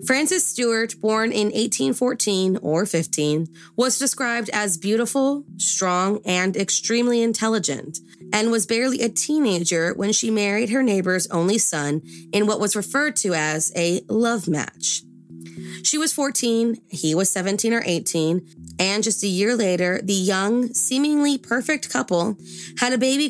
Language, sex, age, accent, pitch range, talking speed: English, female, 20-39, American, 175-235 Hz, 145 wpm